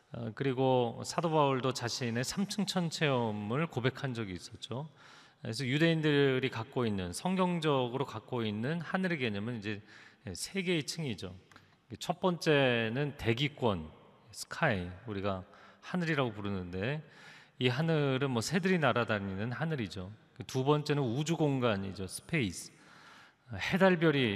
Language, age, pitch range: Korean, 40-59, 110-160 Hz